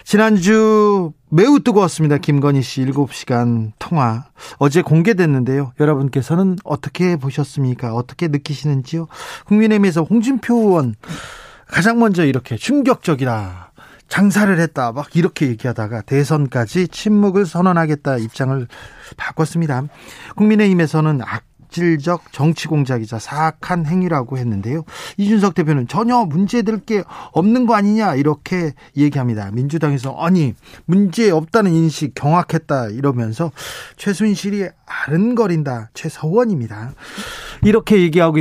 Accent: native